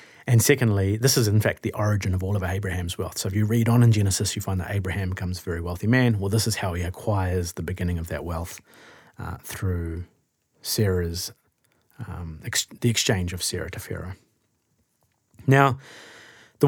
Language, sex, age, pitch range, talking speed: English, male, 30-49, 95-115 Hz, 185 wpm